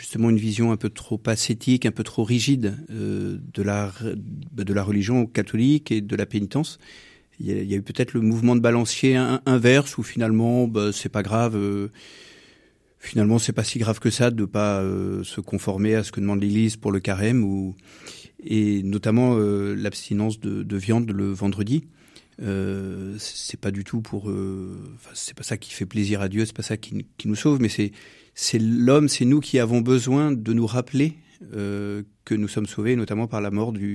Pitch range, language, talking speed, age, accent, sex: 105-120 Hz, French, 210 wpm, 40-59, French, male